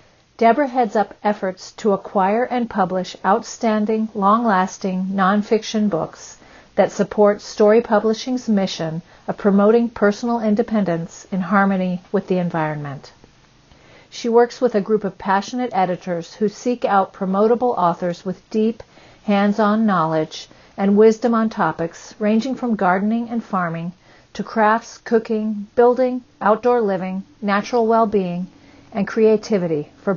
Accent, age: American, 50-69